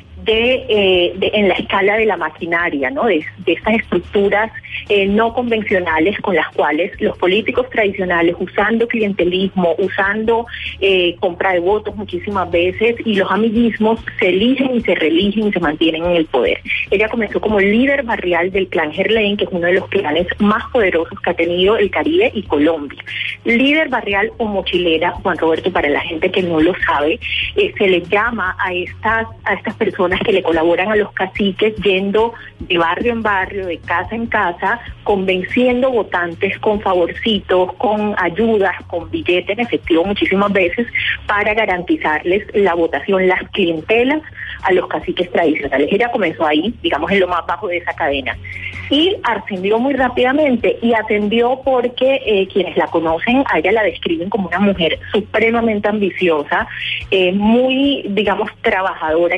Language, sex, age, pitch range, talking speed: Spanish, female, 30-49, 175-225 Hz, 165 wpm